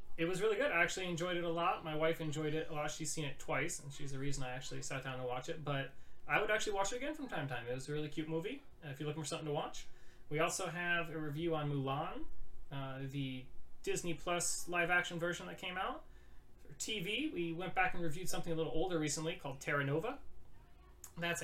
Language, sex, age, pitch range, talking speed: English, male, 30-49, 140-170 Hz, 245 wpm